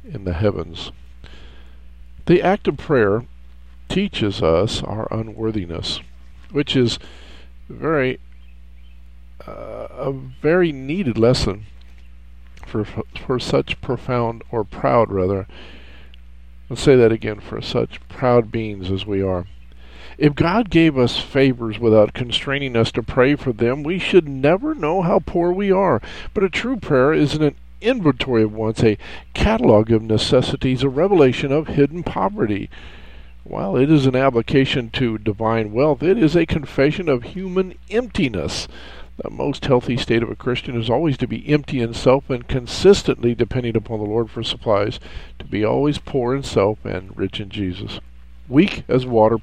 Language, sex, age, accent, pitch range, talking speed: English, male, 50-69, American, 85-140 Hz, 150 wpm